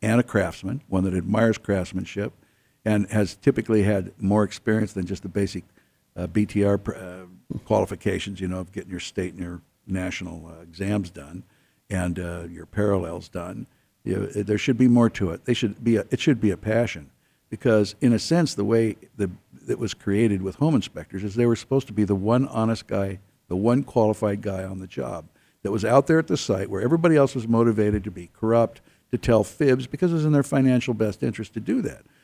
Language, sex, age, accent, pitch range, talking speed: English, male, 60-79, American, 95-120 Hz, 210 wpm